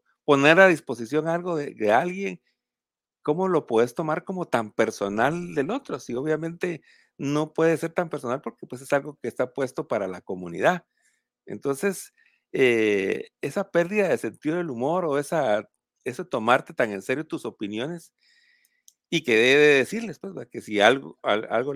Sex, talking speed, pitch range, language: male, 165 wpm, 130-200 Hz, Spanish